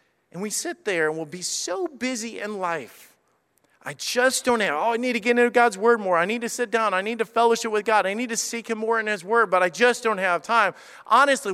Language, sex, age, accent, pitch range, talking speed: English, male, 40-59, American, 165-225 Hz, 265 wpm